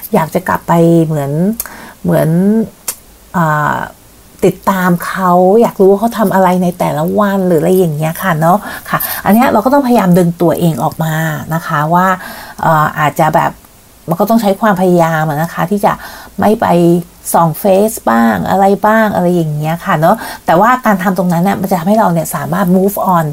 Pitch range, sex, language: 165-210 Hz, female, Thai